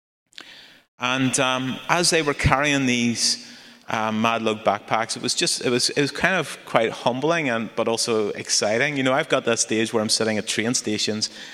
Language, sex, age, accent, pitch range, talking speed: English, male, 30-49, British, 110-140 Hz, 185 wpm